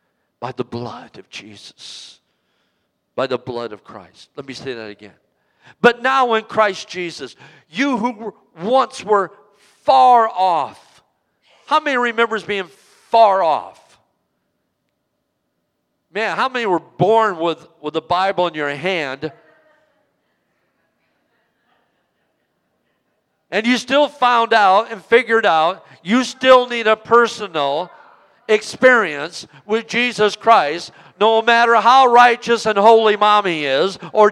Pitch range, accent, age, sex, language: 180-235 Hz, American, 50-69, male, Japanese